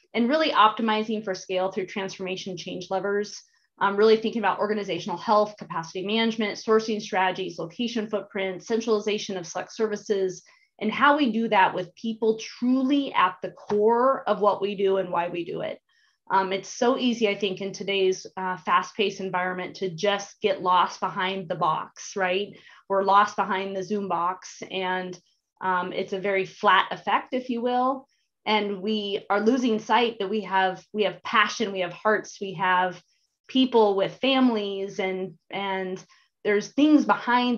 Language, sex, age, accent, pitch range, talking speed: English, female, 20-39, American, 185-220 Hz, 165 wpm